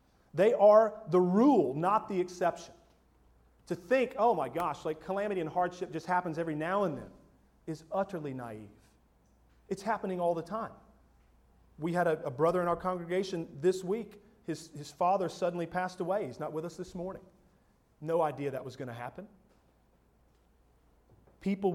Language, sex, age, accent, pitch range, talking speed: English, male, 40-59, American, 150-200 Hz, 165 wpm